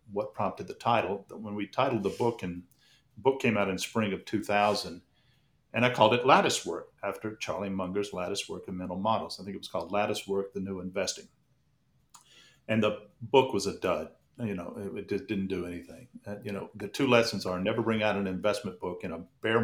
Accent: American